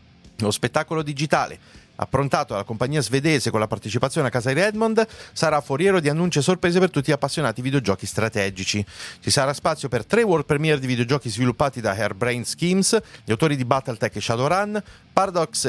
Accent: native